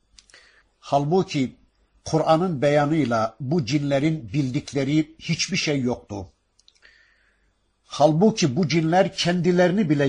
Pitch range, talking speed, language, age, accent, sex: 110-165 Hz, 85 wpm, Turkish, 60-79, native, male